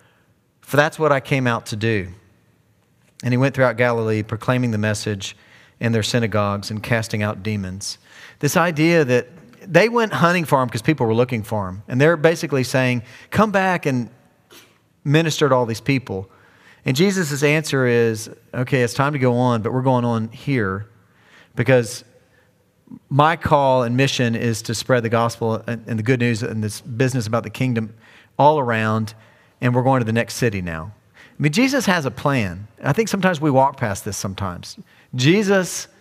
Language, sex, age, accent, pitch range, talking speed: English, male, 40-59, American, 115-150 Hz, 185 wpm